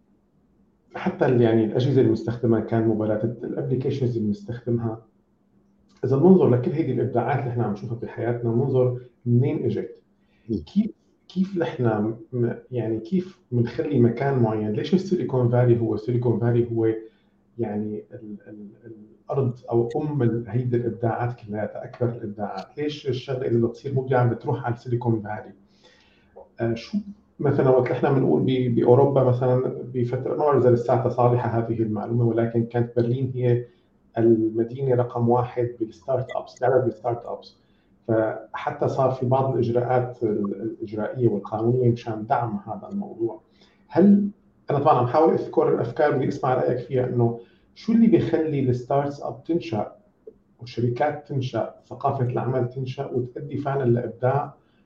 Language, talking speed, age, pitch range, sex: Arabic, 135 wpm, 50-69, 115-135 Hz, male